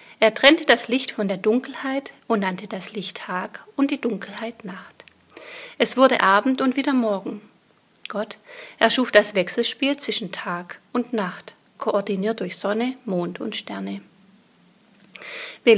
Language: German